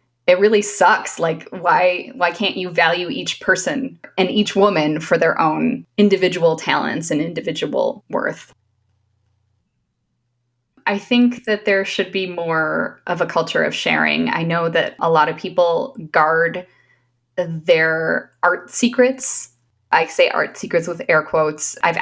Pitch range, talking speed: 160-210 Hz, 145 wpm